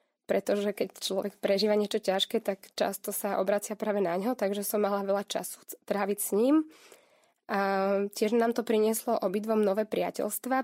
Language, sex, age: Slovak, female, 20-39